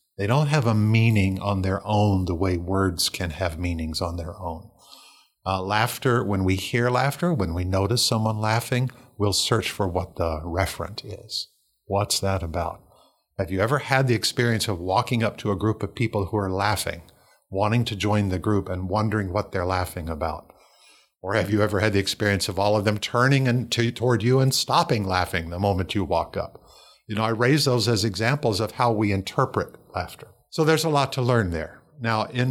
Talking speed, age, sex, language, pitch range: 200 wpm, 50-69, male, English, 95-115 Hz